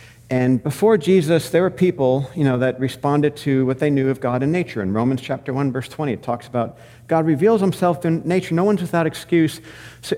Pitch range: 130-185 Hz